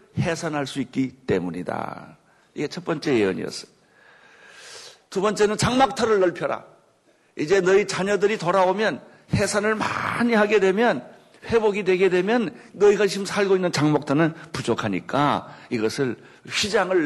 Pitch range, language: 135-200 Hz, Korean